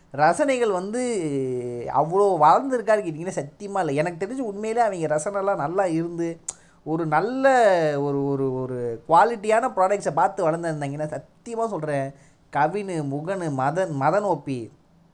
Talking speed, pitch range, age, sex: 110 wpm, 145-205 Hz, 20-39, male